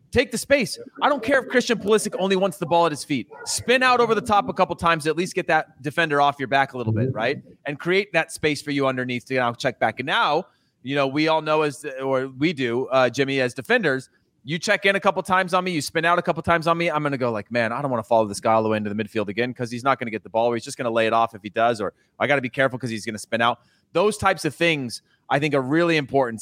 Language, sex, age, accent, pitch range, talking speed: English, male, 30-49, American, 130-175 Hz, 320 wpm